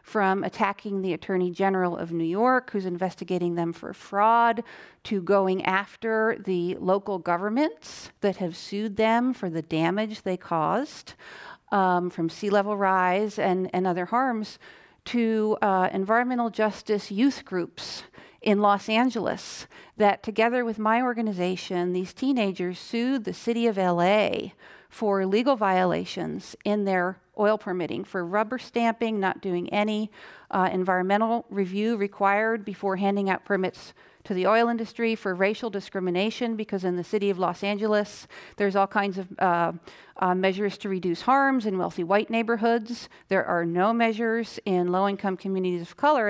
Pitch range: 185-230 Hz